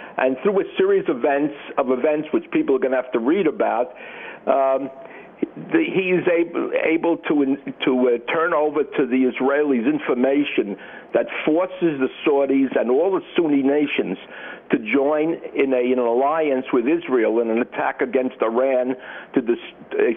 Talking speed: 160 wpm